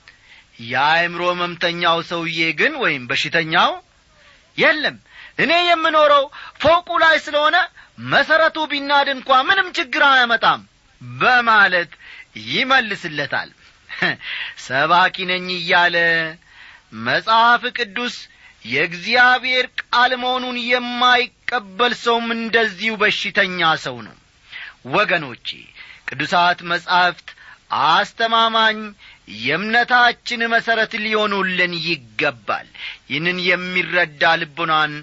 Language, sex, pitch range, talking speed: Amharic, male, 160-230 Hz, 75 wpm